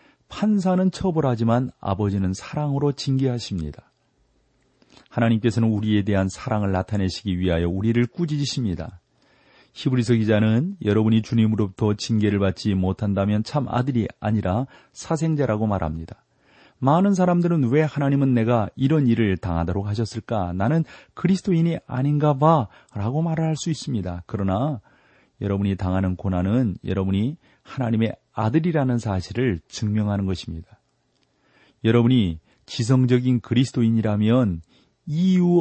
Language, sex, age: Korean, male, 40-59